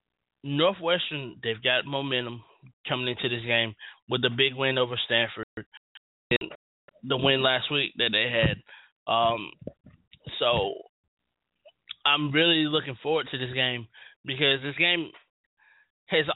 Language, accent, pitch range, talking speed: English, American, 125-145 Hz, 130 wpm